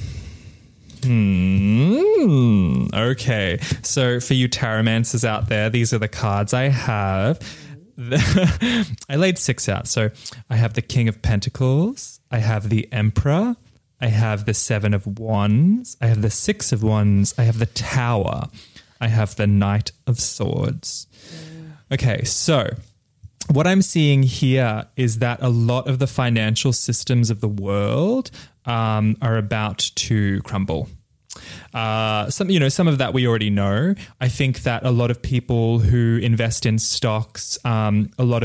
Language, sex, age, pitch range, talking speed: English, male, 20-39, 105-130 Hz, 150 wpm